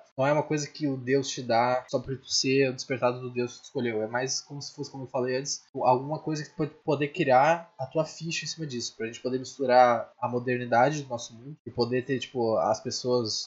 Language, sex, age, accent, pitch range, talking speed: Portuguese, male, 10-29, Brazilian, 120-145 Hz, 255 wpm